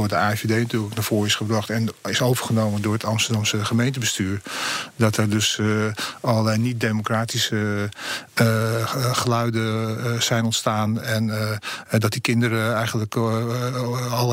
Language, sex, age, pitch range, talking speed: Dutch, male, 50-69, 110-120 Hz, 140 wpm